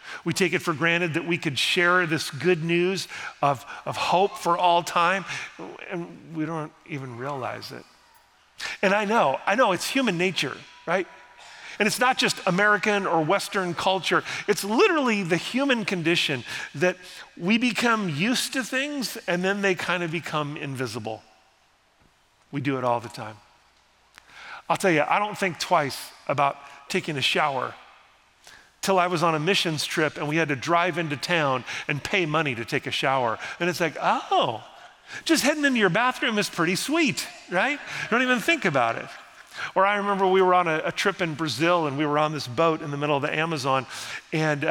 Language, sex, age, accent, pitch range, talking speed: English, male, 40-59, American, 145-195 Hz, 185 wpm